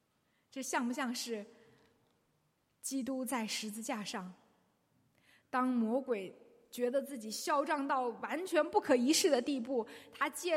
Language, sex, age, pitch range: Chinese, female, 20-39, 215-290 Hz